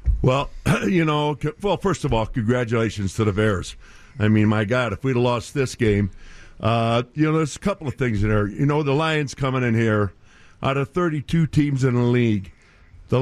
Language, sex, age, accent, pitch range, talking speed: English, male, 50-69, American, 125-175 Hz, 210 wpm